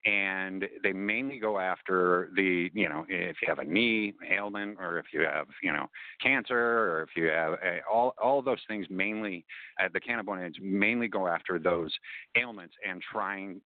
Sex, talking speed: male, 180 wpm